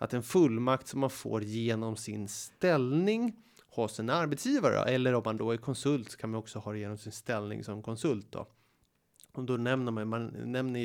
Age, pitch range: 30-49, 110-145 Hz